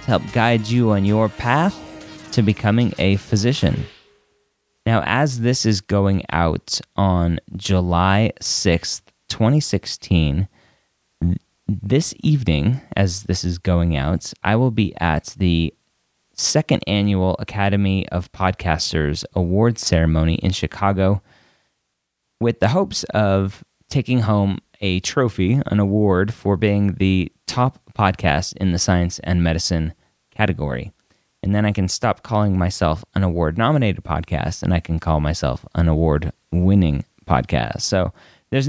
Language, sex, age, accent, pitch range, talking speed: English, male, 30-49, American, 90-115 Hz, 130 wpm